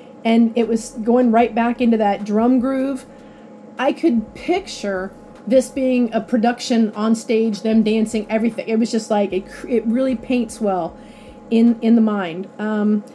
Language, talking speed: English, 165 wpm